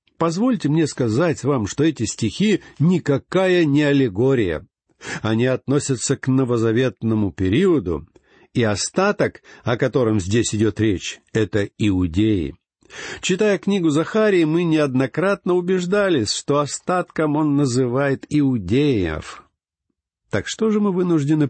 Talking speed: 110 wpm